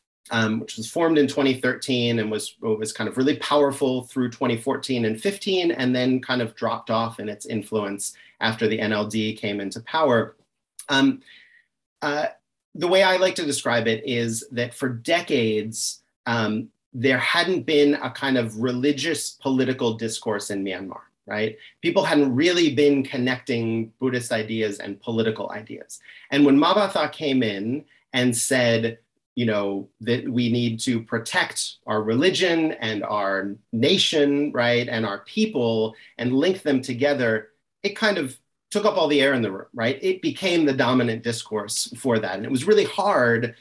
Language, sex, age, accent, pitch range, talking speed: English, male, 30-49, American, 115-145 Hz, 165 wpm